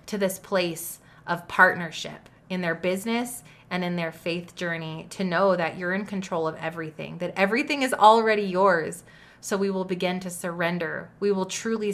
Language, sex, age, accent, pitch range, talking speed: English, female, 20-39, American, 170-195 Hz, 175 wpm